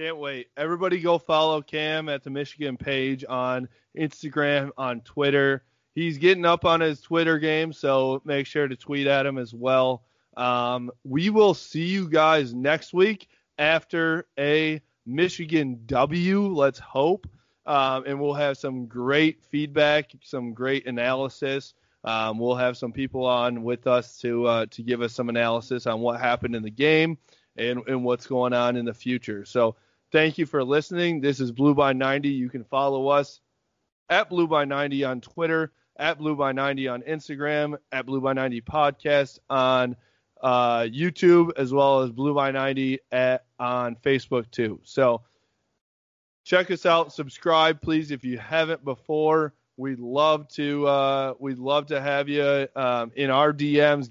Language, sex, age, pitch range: English, male, 20-39, 125-150 Hz